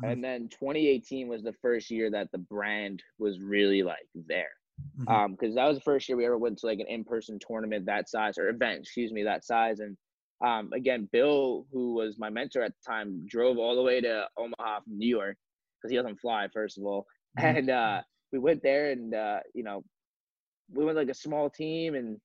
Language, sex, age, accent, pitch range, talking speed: English, male, 20-39, American, 110-130 Hz, 215 wpm